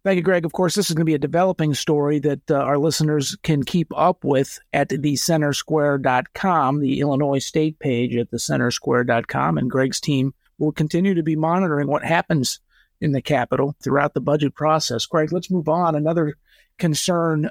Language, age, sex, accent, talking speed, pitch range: English, 50-69, male, American, 180 wpm, 145-170 Hz